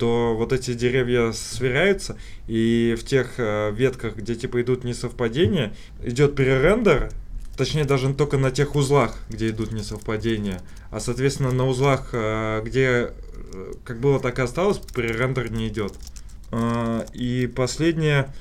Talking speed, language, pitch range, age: 125 wpm, Russian, 110-135 Hz, 20-39